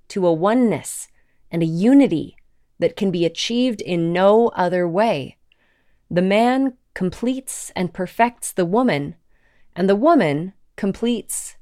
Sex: female